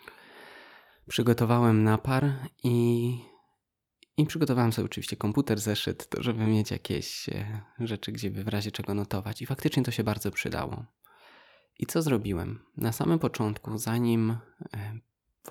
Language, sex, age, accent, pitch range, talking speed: Polish, male, 20-39, native, 105-120 Hz, 130 wpm